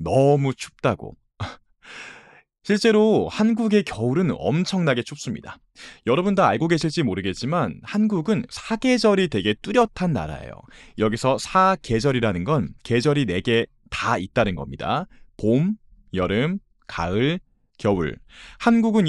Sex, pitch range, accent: male, 115-195 Hz, native